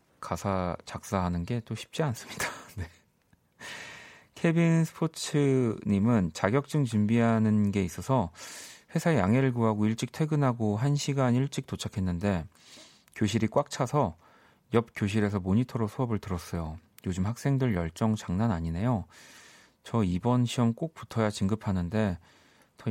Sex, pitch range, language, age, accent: male, 95-130 Hz, Korean, 40-59, native